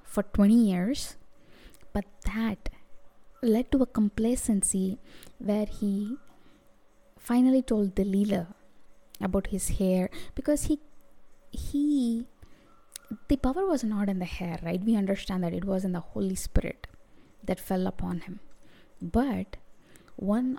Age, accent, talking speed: 20-39, Indian, 125 wpm